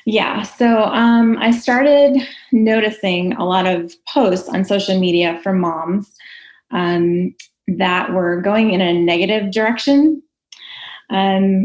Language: English